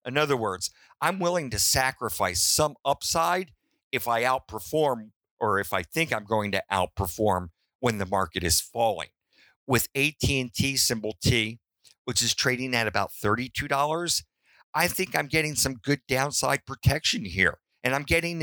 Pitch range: 100-135 Hz